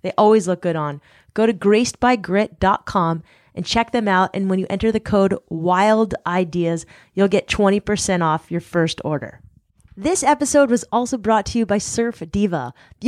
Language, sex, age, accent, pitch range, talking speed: English, female, 20-39, American, 180-225 Hz, 170 wpm